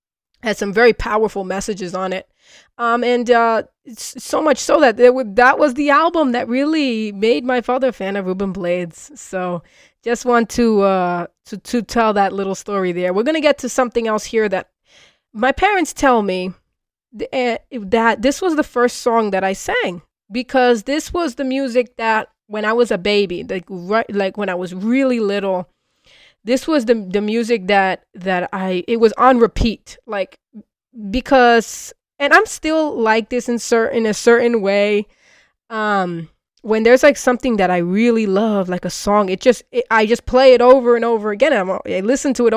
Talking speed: 195 wpm